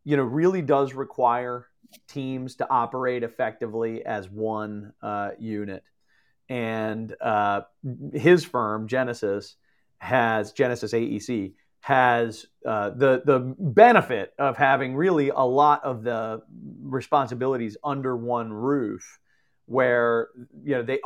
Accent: American